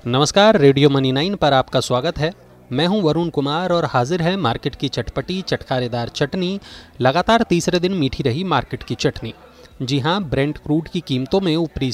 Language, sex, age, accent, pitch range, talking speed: English, male, 30-49, Indian, 130-180 Hz, 180 wpm